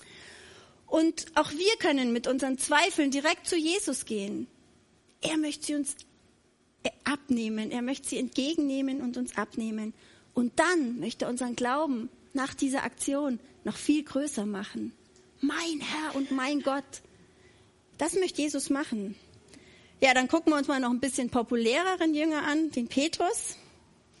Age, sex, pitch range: 30-49, female, 250-320 Hz